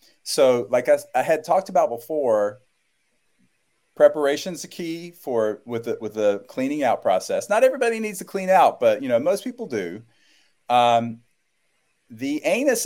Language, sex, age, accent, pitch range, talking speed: English, male, 40-59, American, 120-190 Hz, 155 wpm